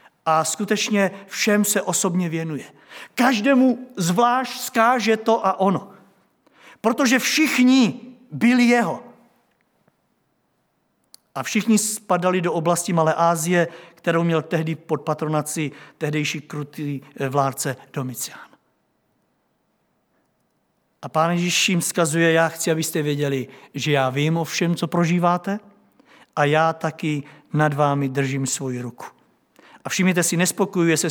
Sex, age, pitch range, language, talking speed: male, 50-69, 145-180 Hz, Czech, 115 wpm